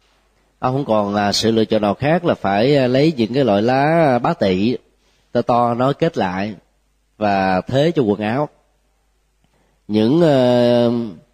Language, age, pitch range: Vietnamese, 20-39, 100-130 Hz